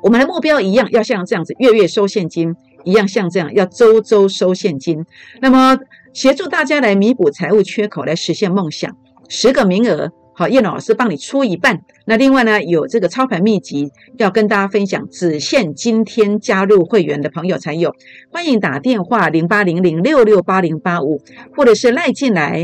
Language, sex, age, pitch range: Chinese, female, 50-69, 180-250 Hz